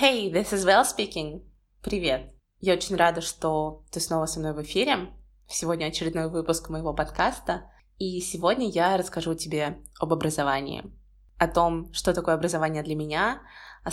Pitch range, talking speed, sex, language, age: 165-195 Hz, 155 wpm, female, Russian, 20-39